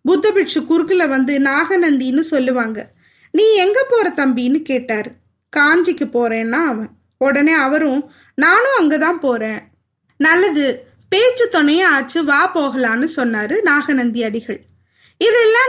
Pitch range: 275-370 Hz